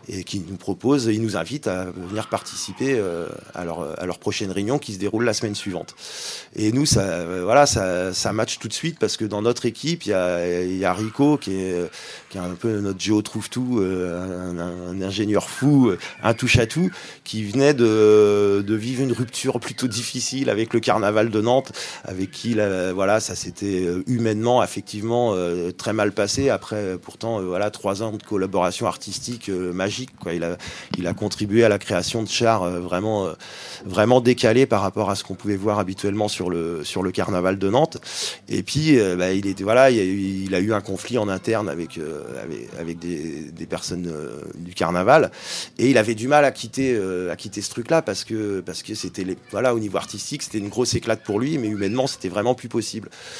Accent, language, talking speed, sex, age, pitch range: French, French, 210 wpm, male, 30-49, 95-120 Hz